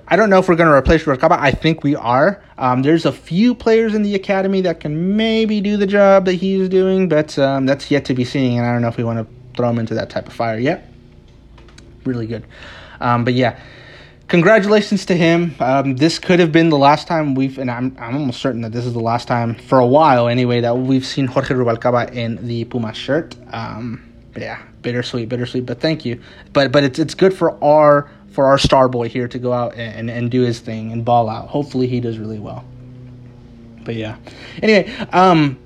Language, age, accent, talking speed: English, 30-49, American, 230 wpm